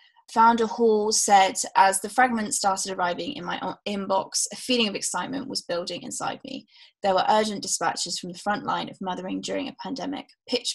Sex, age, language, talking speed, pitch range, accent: female, 10-29, English, 185 wpm, 185-225 Hz, British